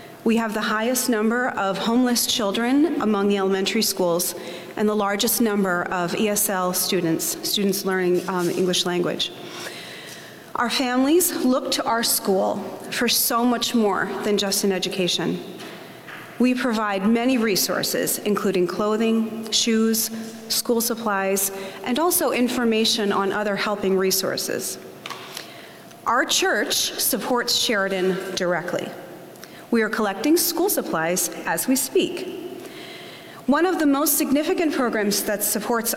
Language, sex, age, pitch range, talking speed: English, female, 30-49, 195-245 Hz, 125 wpm